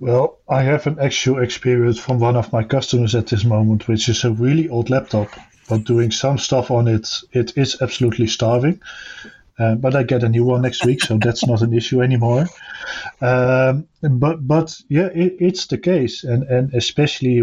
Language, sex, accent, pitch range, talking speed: English, male, Dutch, 115-130 Hz, 195 wpm